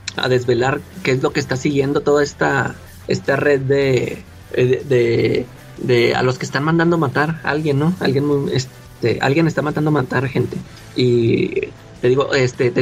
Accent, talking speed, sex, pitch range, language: Mexican, 180 wpm, male, 130-165 Hz, Spanish